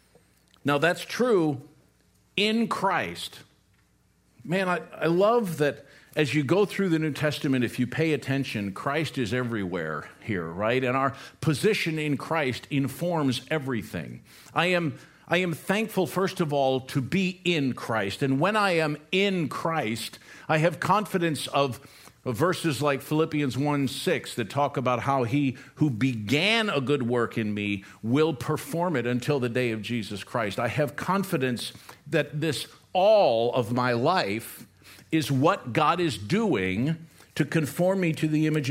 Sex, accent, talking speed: male, American, 155 wpm